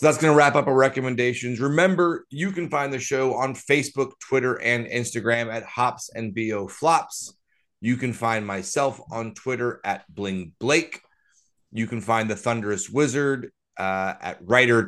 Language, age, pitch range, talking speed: English, 30-49, 100-130 Hz, 170 wpm